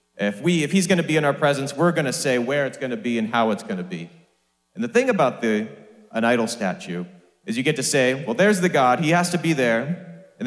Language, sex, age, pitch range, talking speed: English, male, 30-49, 115-170 Hz, 275 wpm